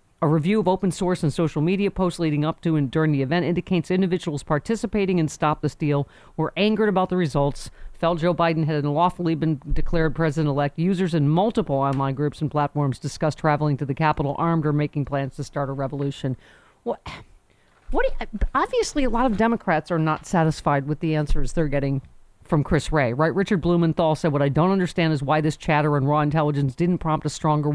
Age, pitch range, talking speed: 50-69, 145-175 Hz, 205 wpm